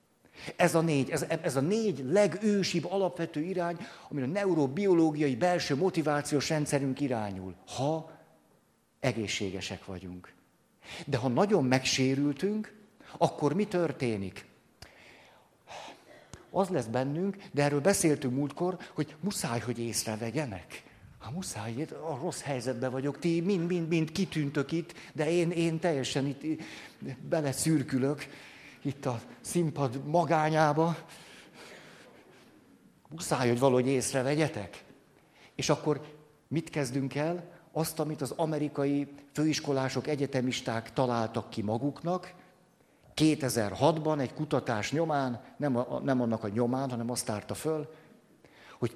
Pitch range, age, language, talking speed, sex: 130-165 Hz, 50-69, Hungarian, 110 wpm, male